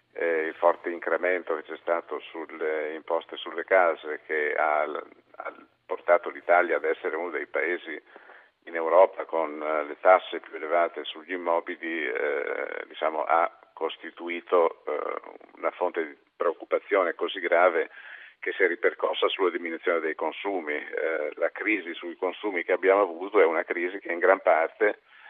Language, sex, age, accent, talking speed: Italian, male, 50-69, native, 150 wpm